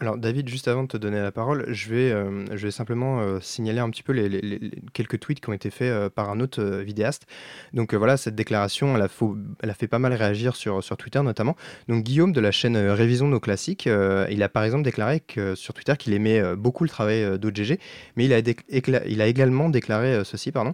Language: French